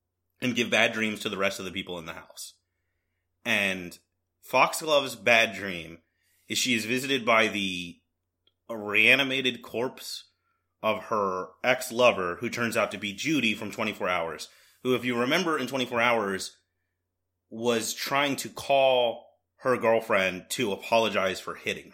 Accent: American